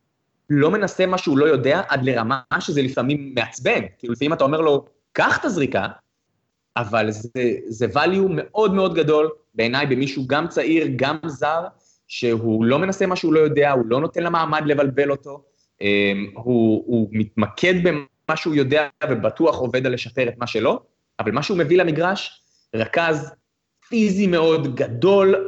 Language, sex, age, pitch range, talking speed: Hebrew, male, 20-39, 120-165 Hz, 160 wpm